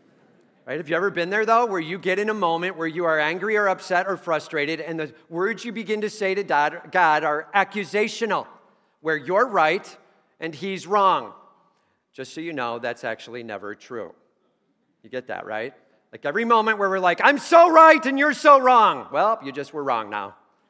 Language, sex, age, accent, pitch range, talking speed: English, male, 40-59, American, 170-225 Hz, 200 wpm